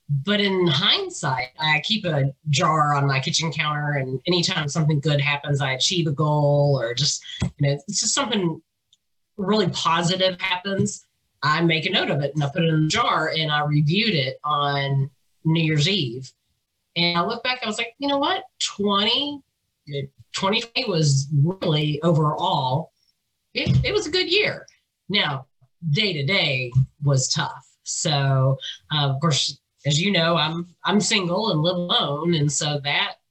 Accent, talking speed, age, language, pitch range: American, 165 wpm, 30-49, English, 140-185 Hz